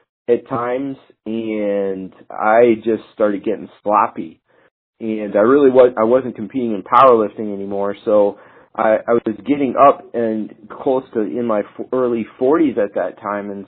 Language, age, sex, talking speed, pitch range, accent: English, 40-59, male, 155 wpm, 105-120 Hz, American